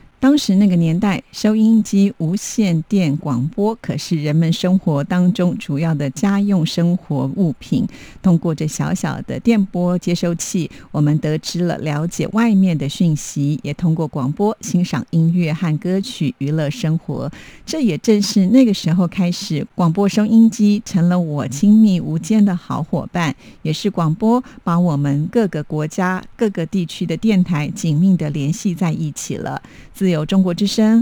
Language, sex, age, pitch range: Chinese, female, 50-69, 160-200 Hz